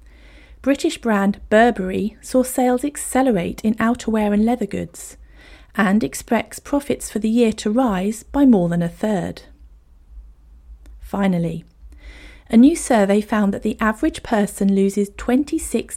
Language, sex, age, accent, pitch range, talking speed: English, female, 40-59, British, 175-240 Hz, 130 wpm